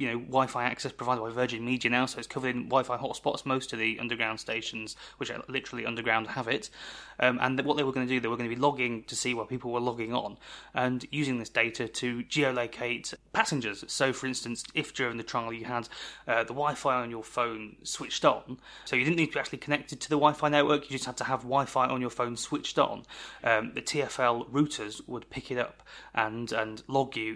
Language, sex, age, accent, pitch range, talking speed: English, male, 20-39, British, 115-130 Hz, 230 wpm